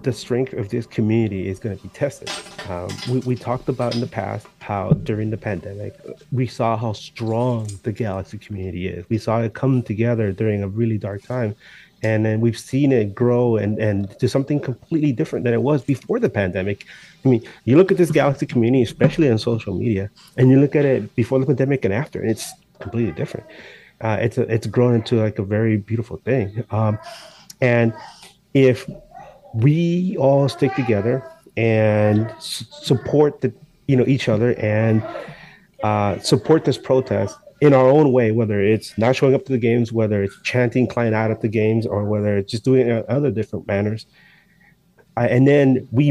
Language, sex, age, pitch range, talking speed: English, male, 30-49, 110-135 Hz, 195 wpm